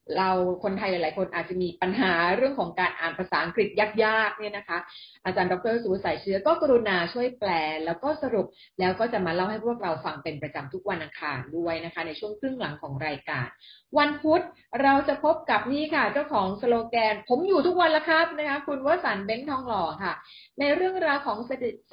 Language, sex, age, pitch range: Thai, female, 30-49, 185-245 Hz